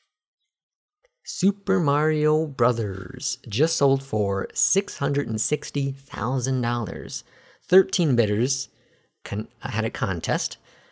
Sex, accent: male, American